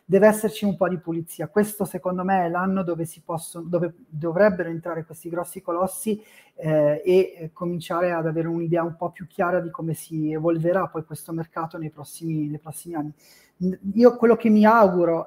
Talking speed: 190 wpm